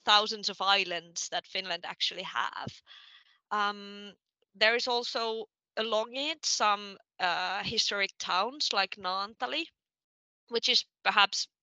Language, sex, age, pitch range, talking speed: Finnish, female, 20-39, 185-220 Hz, 115 wpm